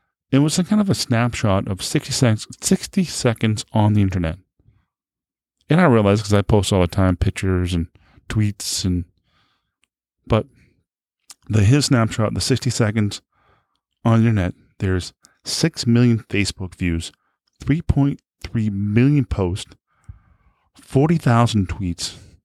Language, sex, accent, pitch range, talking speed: English, male, American, 95-120 Hz, 130 wpm